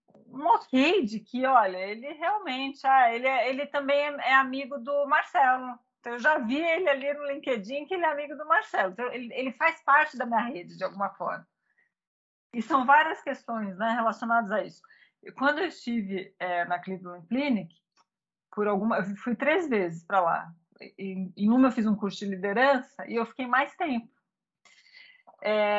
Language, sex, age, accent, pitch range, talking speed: Portuguese, female, 40-59, Brazilian, 205-275 Hz, 180 wpm